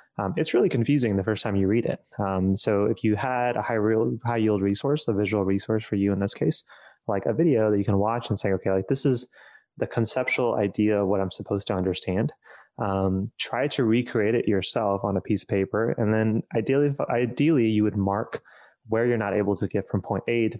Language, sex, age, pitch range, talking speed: English, male, 20-39, 100-120 Hz, 230 wpm